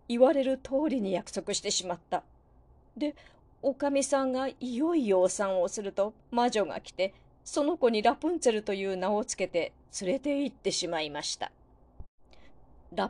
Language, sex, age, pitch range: Japanese, female, 40-59, 185-280 Hz